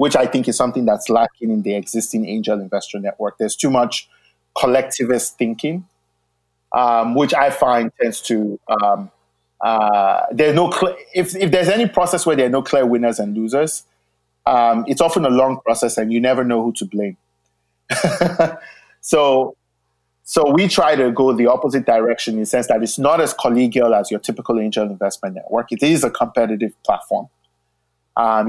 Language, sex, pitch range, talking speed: English, male, 110-145 Hz, 175 wpm